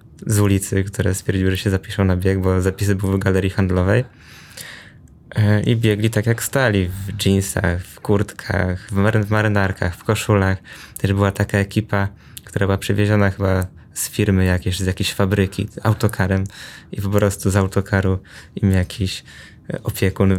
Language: Polish